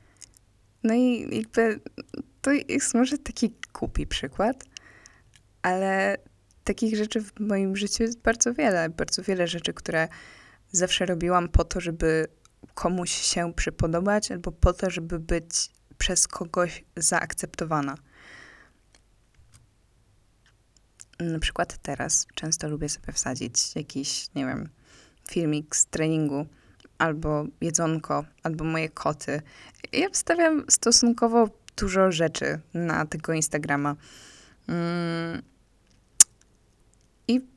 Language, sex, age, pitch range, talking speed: Polish, female, 20-39, 145-185 Hz, 105 wpm